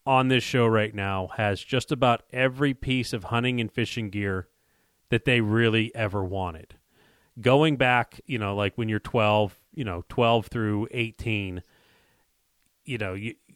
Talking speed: 160 wpm